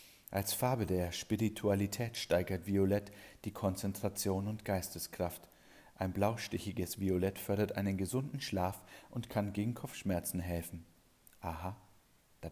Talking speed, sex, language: 115 wpm, male, German